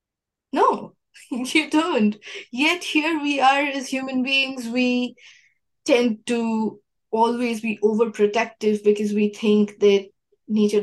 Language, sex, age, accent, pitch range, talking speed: English, female, 20-39, Indian, 175-215 Hz, 115 wpm